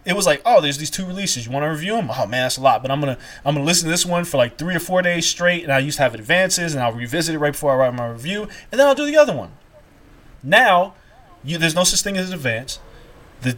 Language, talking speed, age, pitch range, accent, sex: English, 300 wpm, 20-39, 135-185 Hz, American, male